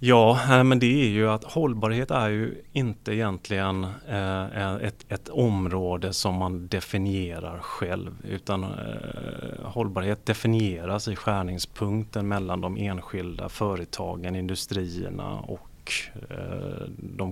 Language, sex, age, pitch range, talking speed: Swedish, male, 30-49, 90-110 Hz, 105 wpm